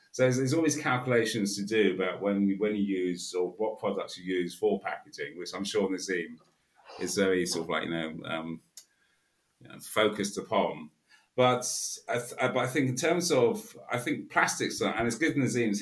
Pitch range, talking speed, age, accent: 95-120 Hz, 195 wpm, 40-59, British